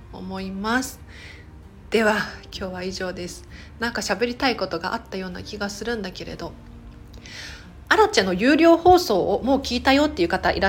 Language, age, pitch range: Japanese, 40-59, 185-270 Hz